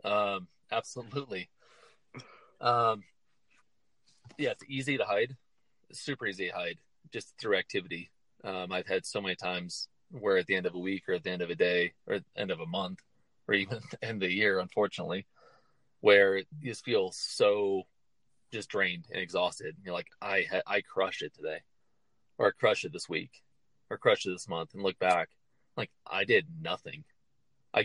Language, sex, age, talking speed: English, male, 30-49, 185 wpm